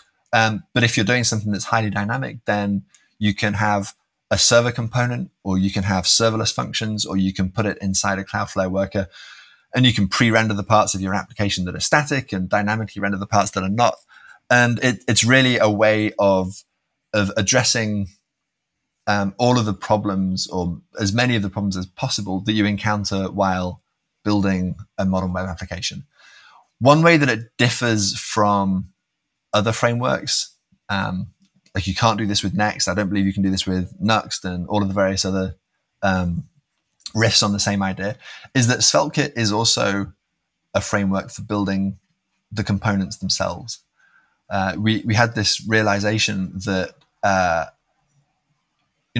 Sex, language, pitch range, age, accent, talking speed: male, English, 95-115 Hz, 30-49, British, 170 wpm